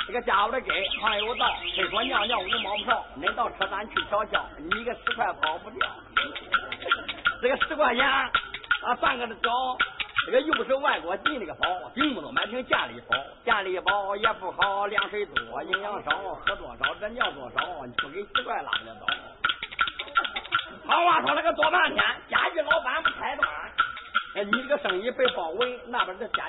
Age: 50-69